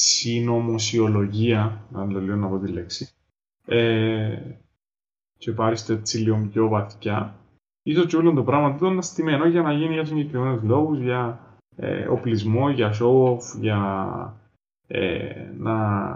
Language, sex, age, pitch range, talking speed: Greek, male, 20-39, 110-130 Hz, 135 wpm